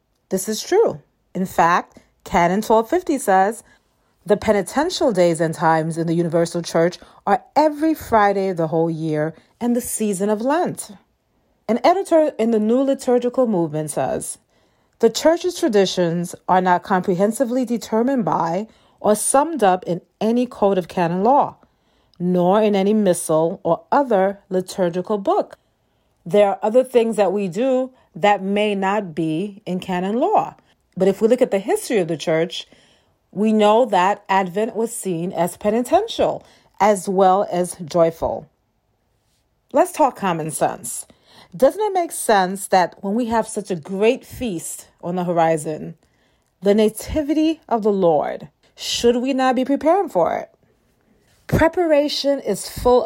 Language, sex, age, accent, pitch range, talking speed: English, female, 40-59, American, 180-250 Hz, 150 wpm